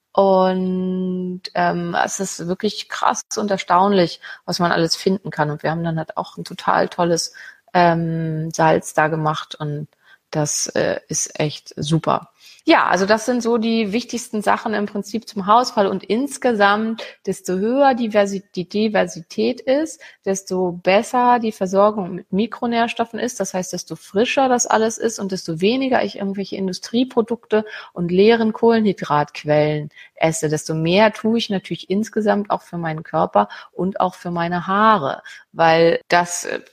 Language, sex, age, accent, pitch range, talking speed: German, female, 30-49, German, 175-215 Hz, 150 wpm